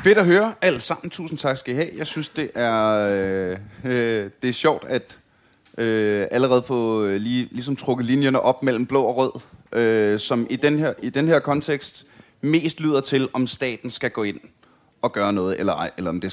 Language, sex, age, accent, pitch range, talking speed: Danish, male, 30-49, native, 115-155 Hz, 190 wpm